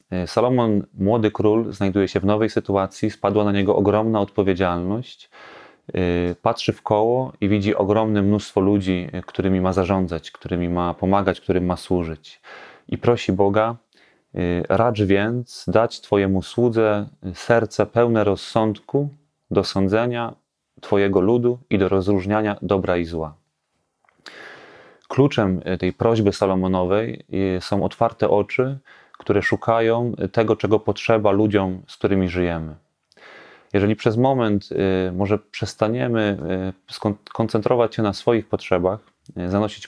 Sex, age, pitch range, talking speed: male, 30-49, 95-110 Hz, 115 wpm